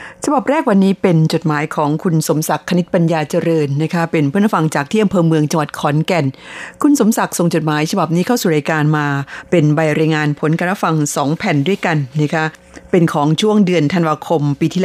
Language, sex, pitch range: Thai, female, 150-185 Hz